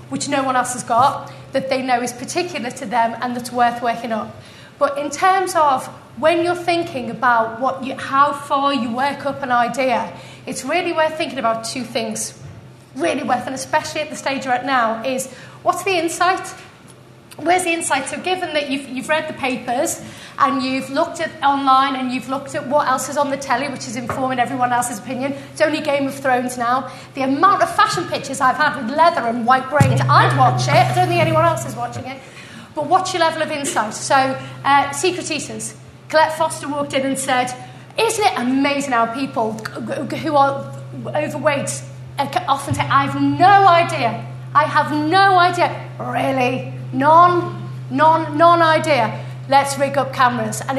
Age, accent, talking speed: 30-49, British, 190 wpm